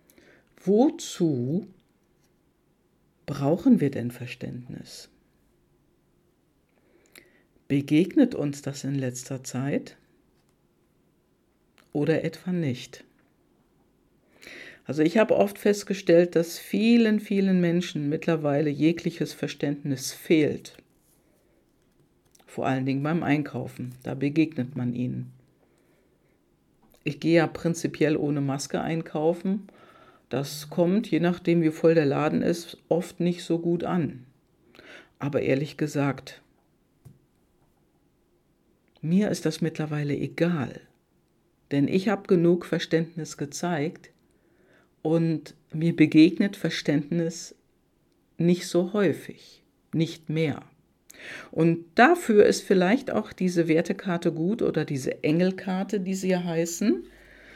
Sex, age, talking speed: female, 60-79, 100 wpm